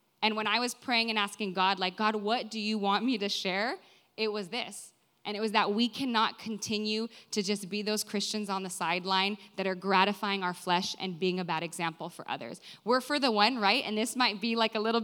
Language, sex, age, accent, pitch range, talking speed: English, female, 20-39, American, 190-225 Hz, 235 wpm